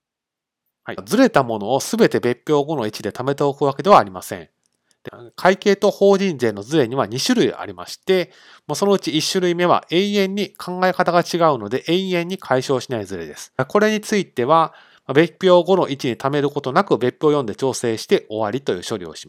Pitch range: 120-180 Hz